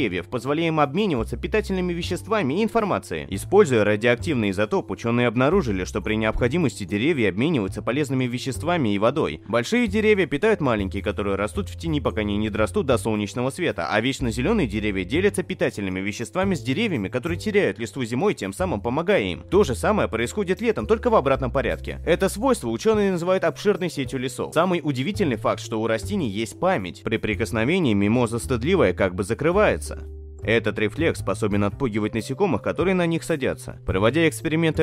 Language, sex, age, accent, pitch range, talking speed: Russian, male, 20-39, native, 105-165 Hz, 160 wpm